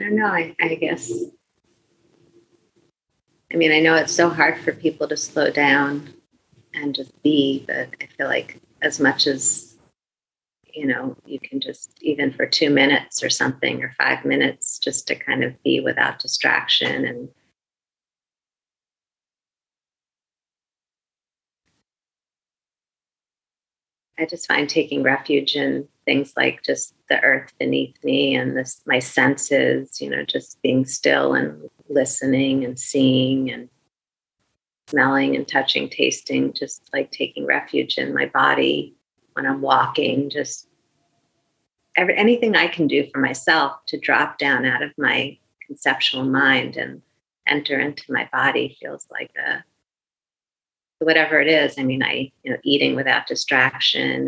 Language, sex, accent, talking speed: English, female, American, 140 wpm